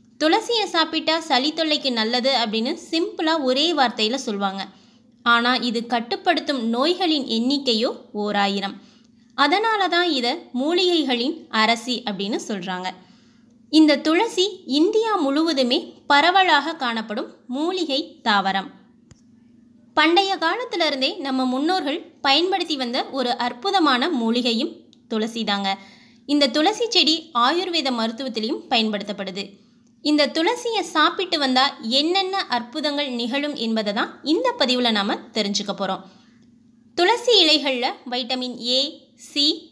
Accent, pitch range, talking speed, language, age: native, 235-320 Hz, 100 wpm, Tamil, 20-39